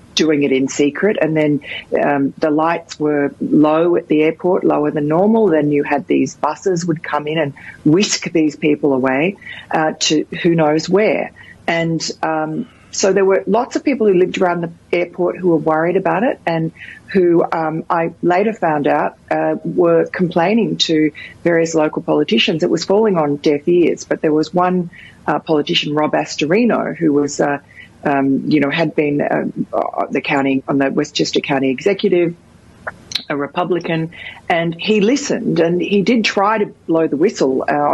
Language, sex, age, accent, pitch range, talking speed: English, female, 40-59, Australian, 145-175 Hz, 175 wpm